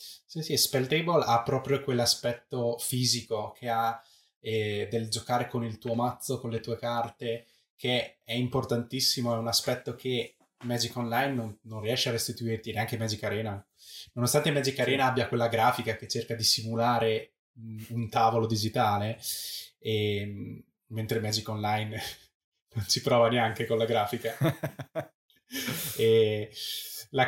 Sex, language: male, Italian